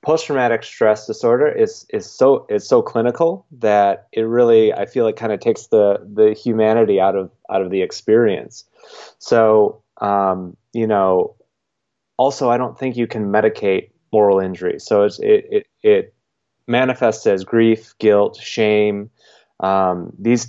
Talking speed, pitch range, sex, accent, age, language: 155 wpm, 100-120 Hz, male, American, 20-39, English